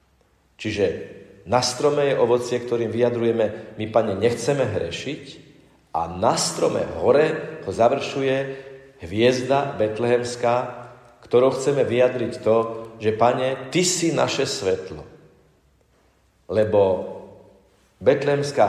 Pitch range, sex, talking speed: 105-130 Hz, male, 100 wpm